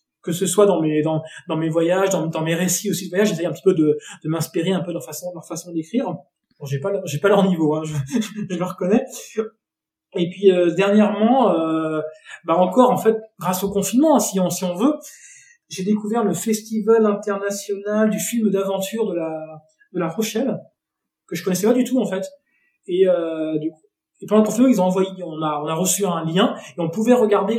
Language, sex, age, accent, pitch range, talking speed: French, male, 20-39, French, 170-220 Hz, 225 wpm